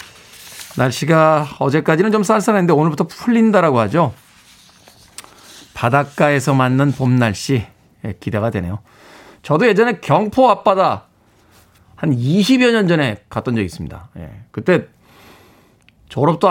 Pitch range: 120-180 Hz